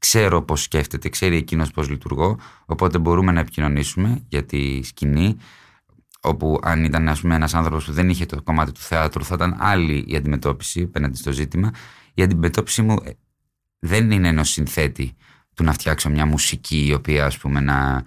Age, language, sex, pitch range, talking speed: 20-39, Greek, male, 75-90 Hz, 170 wpm